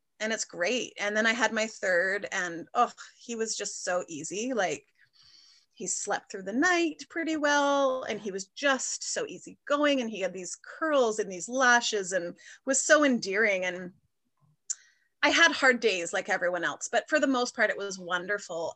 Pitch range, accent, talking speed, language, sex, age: 195-255 Hz, American, 190 wpm, English, female, 30-49